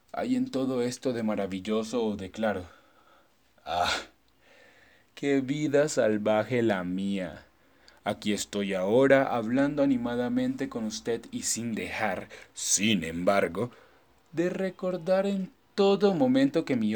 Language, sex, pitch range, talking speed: Spanish, male, 105-145 Hz, 120 wpm